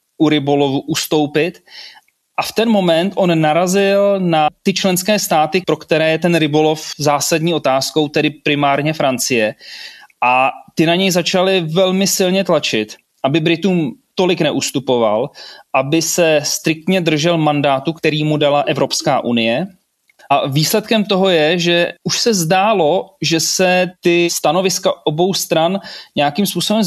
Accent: native